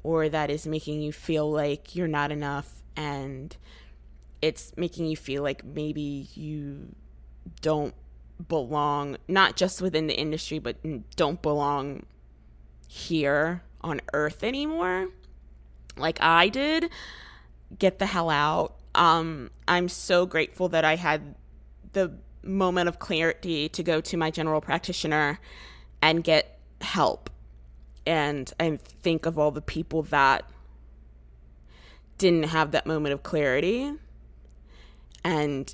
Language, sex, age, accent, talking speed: English, female, 20-39, American, 125 wpm